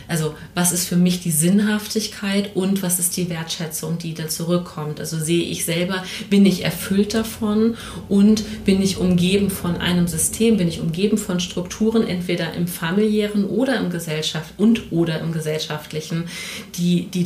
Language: German